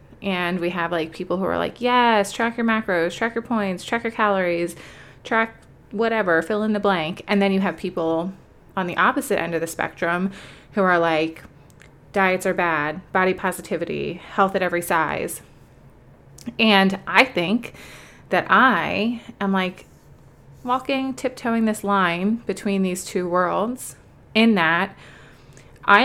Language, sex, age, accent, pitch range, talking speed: English, female, 20-39, American, 165-205 Hz, 150 wpm